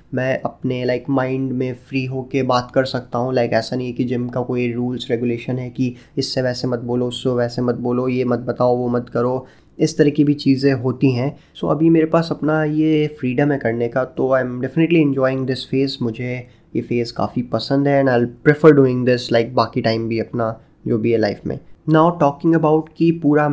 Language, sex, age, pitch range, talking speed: Hindi, male, 20-39, 125-150 Hz, 230 wpm